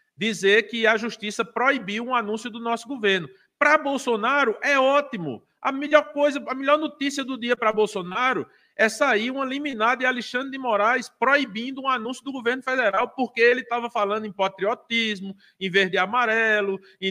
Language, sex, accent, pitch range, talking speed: Portuguese, male, Brazilian, 200-255 Hz, 170 wpm